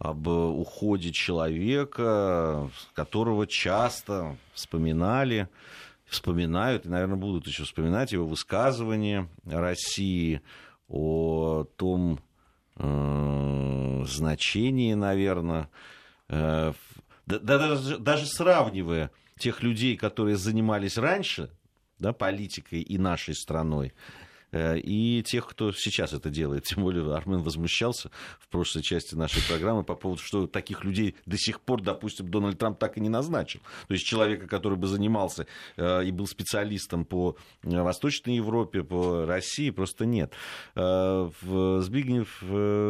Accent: native